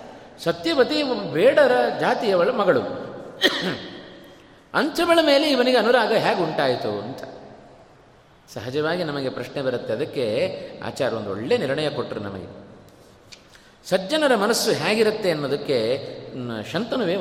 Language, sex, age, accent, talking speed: Kannada, male, 30-49, native, 95 wpm